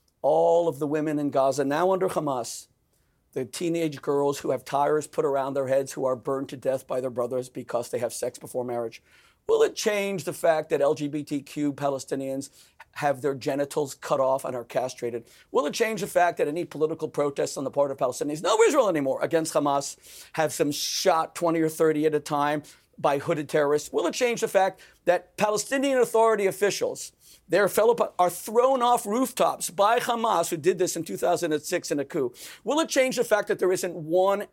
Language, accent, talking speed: English, American, 200 wpm